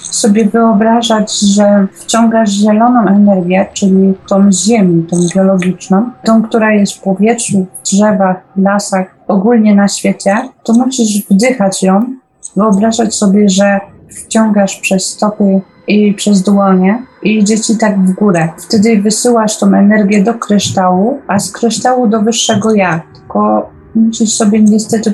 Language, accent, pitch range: Polish, native, 190-225 Hz